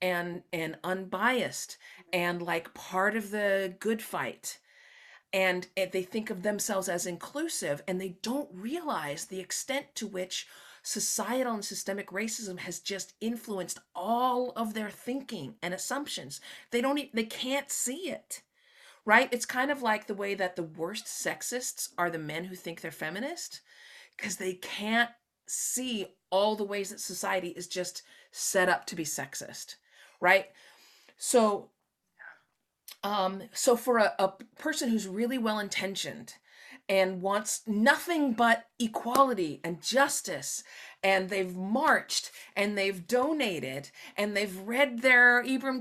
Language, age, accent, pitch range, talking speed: English, 40-59, American, 185-245 Hz, 140 wpm